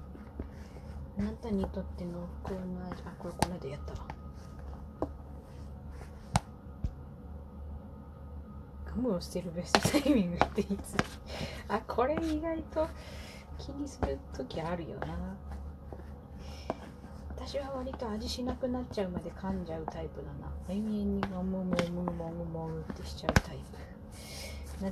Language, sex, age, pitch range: Japanese, female, 30-49, 70-90 Hz